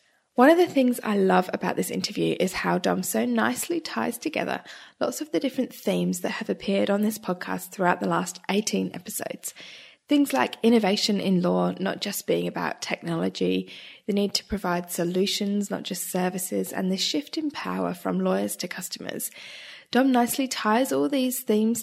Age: 10-29